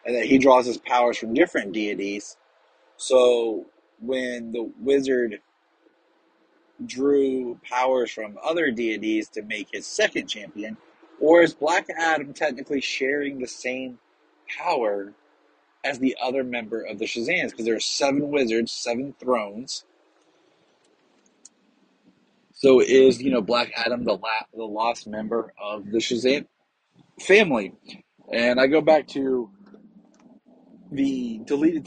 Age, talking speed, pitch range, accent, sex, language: 30-49, 130 wpm, 115-140 Hz, American, male, English